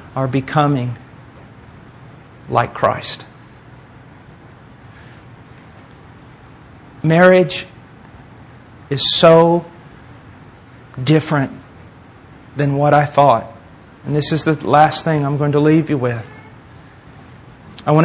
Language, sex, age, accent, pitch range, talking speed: English, male, 40-59, American, 130-150 Hz, 85 wpm